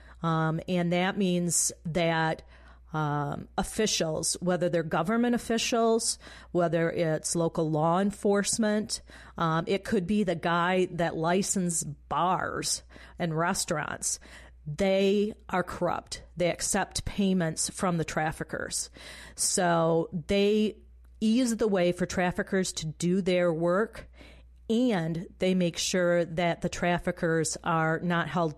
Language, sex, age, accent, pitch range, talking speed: English, female, 40-59, American, 160-195 Hz, 120 wpm